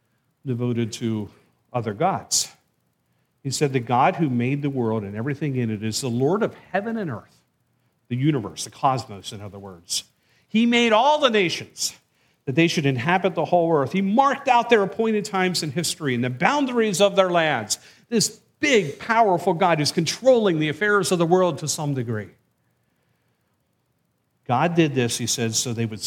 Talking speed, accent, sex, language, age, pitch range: 180 wpm, American, male, English, 50-69, 115-175 Hz